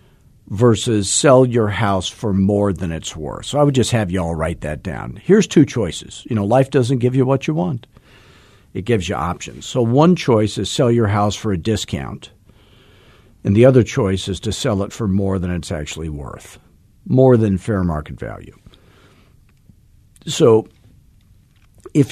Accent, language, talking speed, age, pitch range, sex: American, English, 180 wpm, 50-69, 95-120 Hz, male